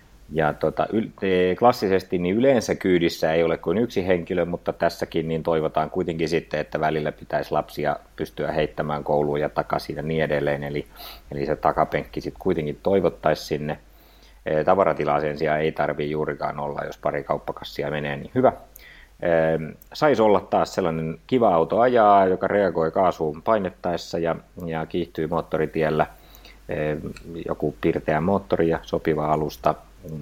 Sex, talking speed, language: male, 145 wpm, Finnish